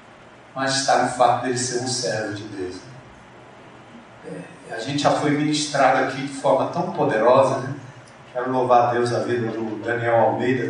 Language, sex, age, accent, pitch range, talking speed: Portuguese, male, 40-59, Brazilian, 130-170 Hz, 175 wpm